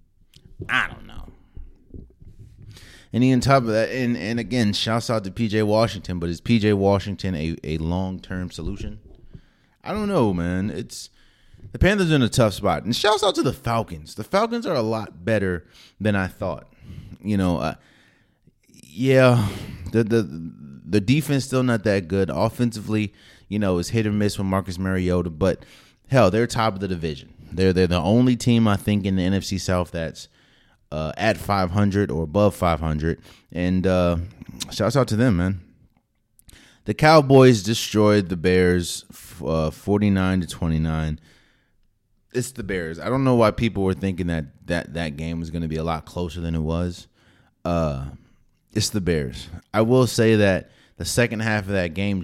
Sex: male